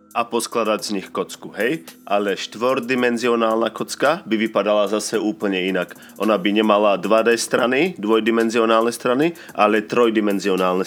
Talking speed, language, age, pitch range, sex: 125 wpm, Slovak, 30-49, 105-120 Hz, male